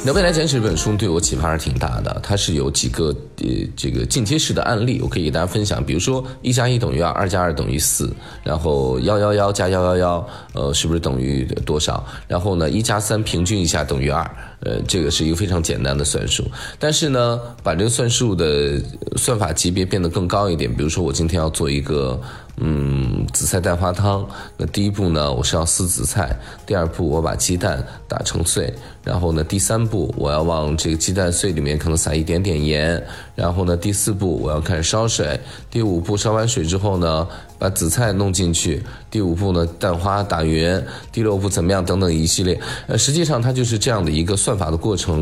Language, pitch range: Chinese, 80-105 Hz